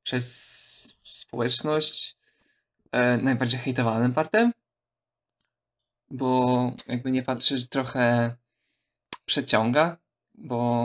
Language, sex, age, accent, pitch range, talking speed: Polish, male, 20-39, native, 120-130 Hz, 70 wpm